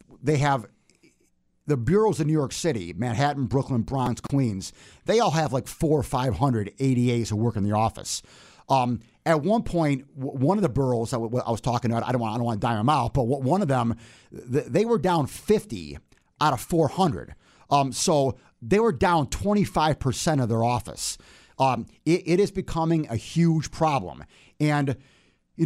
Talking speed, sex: 185 wpm, male